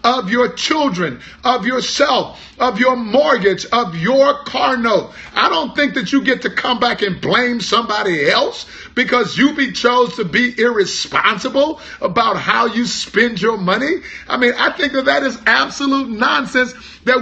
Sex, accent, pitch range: male, American, 230-270 Hz